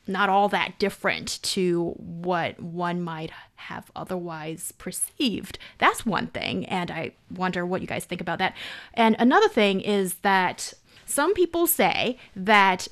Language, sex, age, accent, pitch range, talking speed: English, female, 20-39, American, 200-275 Hz, 150 wpm